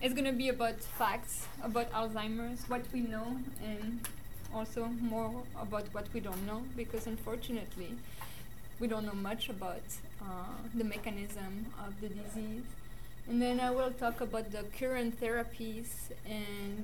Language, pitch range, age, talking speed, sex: English, 200-235 Hz, 20-39, 145 wpm, female